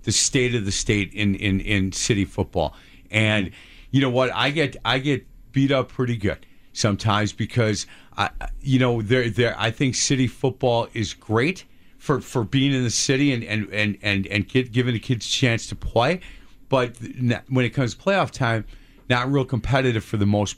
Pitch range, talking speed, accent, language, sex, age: 110-140 Hz, 195 wpm, American, English, male, 50-69